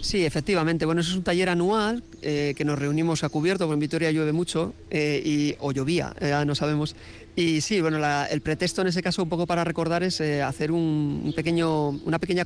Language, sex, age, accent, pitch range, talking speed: Spanish, male, 40-59, Spanish, 145-180 Hz, 230 wpm